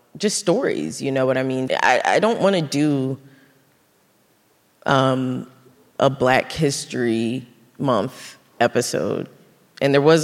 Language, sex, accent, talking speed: English, female, American, 125 wpm